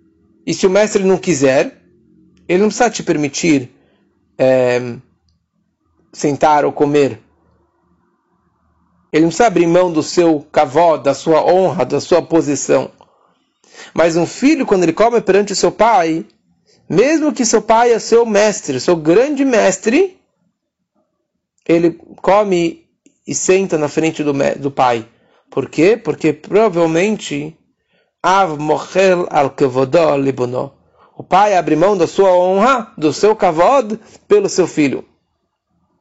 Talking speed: 125 wpm